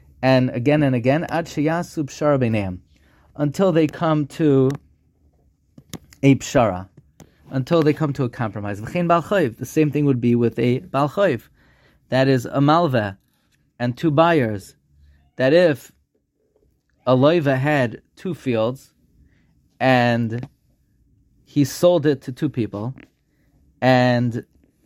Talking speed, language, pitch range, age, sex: 110 wpm, English, 120-155 Hz, 30-49, male